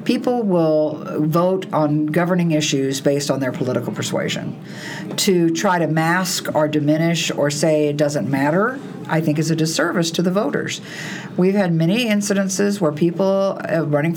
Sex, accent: female, American